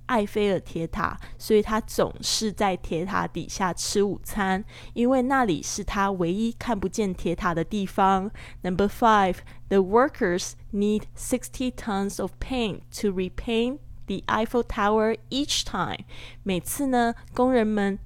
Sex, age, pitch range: female, 10-29, 190-235 Hz